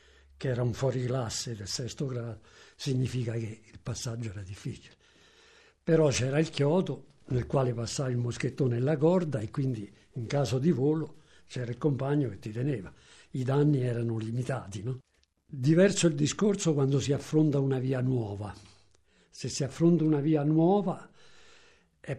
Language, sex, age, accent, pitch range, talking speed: Italian, male, 60-79, native, 125-155 Hz, 160 wpm